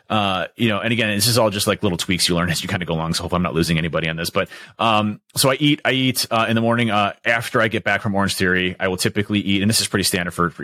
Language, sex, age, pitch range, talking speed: English, male, 30-49, 95-115 Hz, 325 wpm